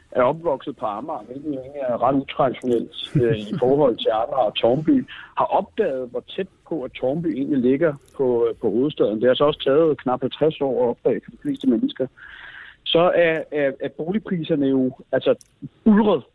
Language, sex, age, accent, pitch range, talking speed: Danish, male, 60-79, native, 125-165 Hz, 185 wpm